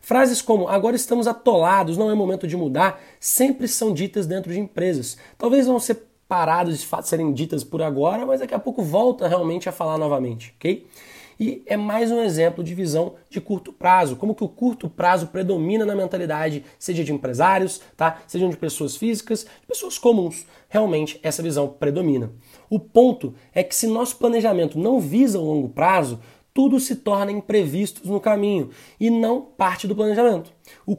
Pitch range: 165-225 Hz